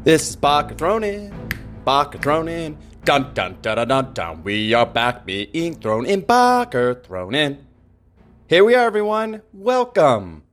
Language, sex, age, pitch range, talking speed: English, male, 30-49, 100-135 Hz, 165 wpm